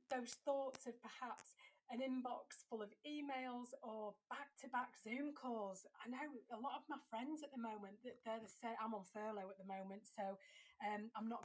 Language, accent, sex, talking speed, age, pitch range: English, British, female, 205 wpm, 30-49, 210-265 Hz